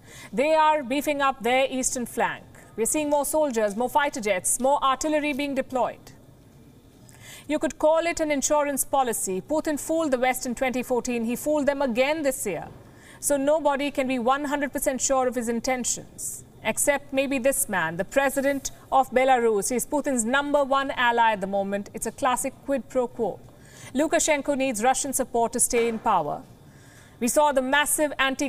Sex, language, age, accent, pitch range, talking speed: female, English, 50-69, Indian, 235-290 Hz, 170 wpm